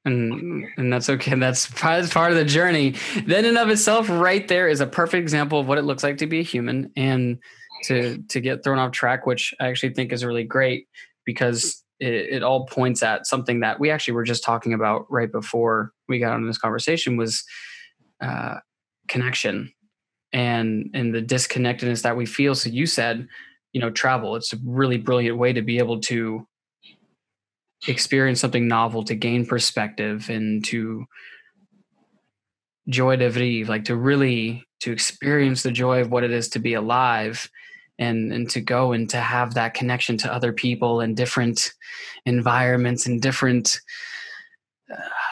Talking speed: 175 wpm